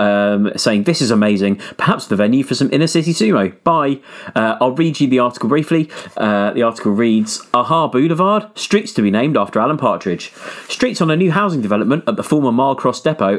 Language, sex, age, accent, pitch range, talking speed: English, male, 30-49, British, 100-165 Hz, 200 wpm